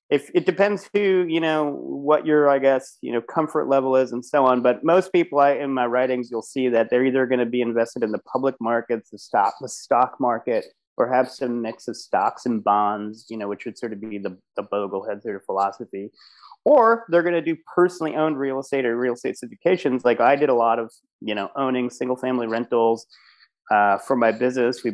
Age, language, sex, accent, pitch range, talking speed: 30-49, English, male, American, 115-150 Hz, 225 wpm